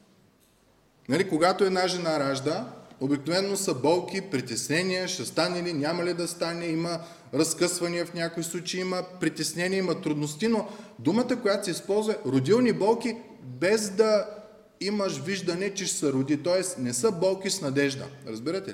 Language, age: Bulgarian, 30-49